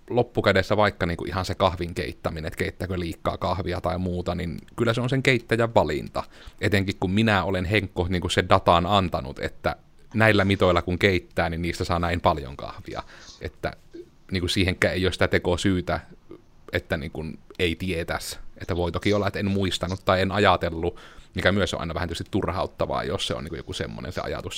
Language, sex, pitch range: Finnish, male, 90-105 Hz